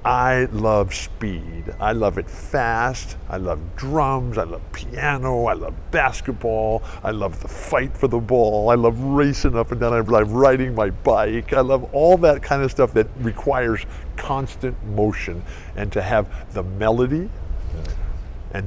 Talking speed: 165 wpm